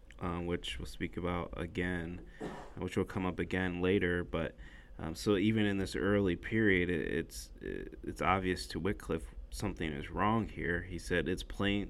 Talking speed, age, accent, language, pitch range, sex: 165 wpm, 30-49, American, English, 80-95 Hz, male